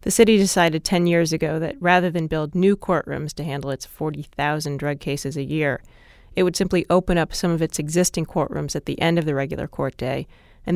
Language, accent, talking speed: English, American, 220 wpm